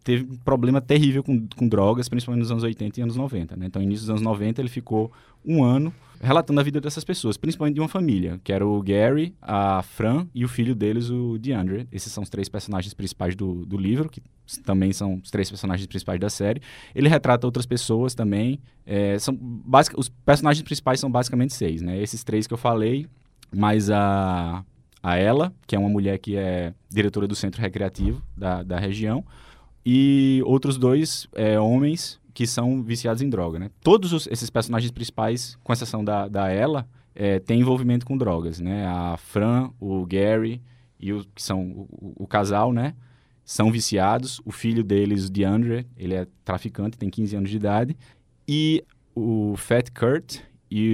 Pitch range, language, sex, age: 100-125 Hz, Portuguese, male, 20-39